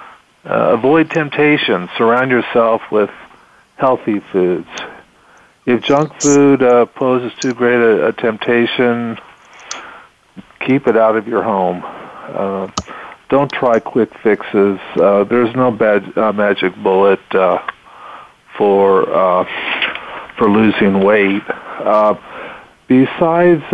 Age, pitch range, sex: 50-69, 100-125 Hz, male